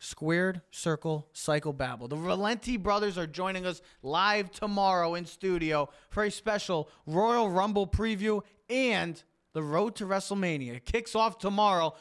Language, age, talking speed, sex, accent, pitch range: English, 20-39, 145 wpm, male, American, 145-210 Hz